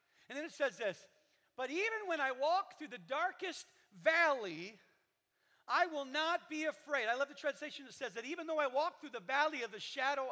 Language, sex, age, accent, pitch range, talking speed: English, male, 40-59, American, 245-330 Hz, 210 wpm